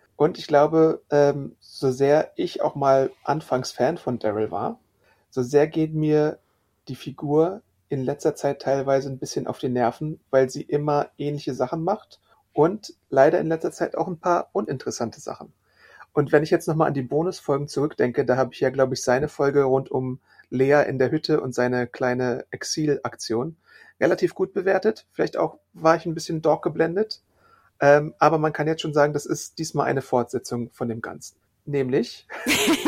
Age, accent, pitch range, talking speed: 40-59, German, 130-155 Hz, 180 wpm